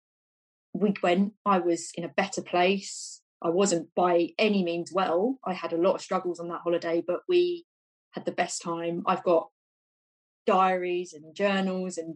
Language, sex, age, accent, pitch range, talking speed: English, female, 20-39, British, 165-200 Hz, 175 wpm